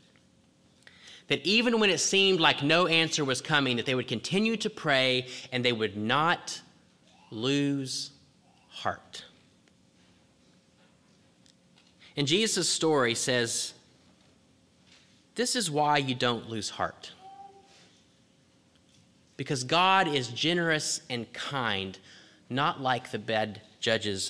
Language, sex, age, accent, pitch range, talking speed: English, male, 30-49, American, 125-165 Hz, 110 wpm